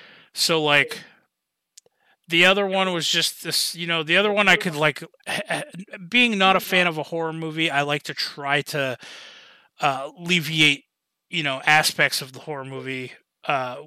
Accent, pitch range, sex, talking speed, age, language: American, 130-170 Hz, male, 170 wpm, 30-49, English